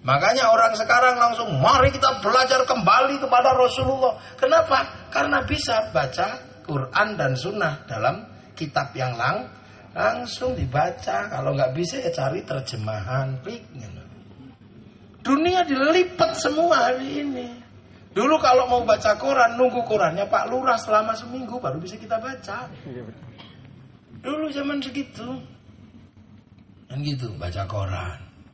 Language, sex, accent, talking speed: Indonesian, male, native, 115 wpm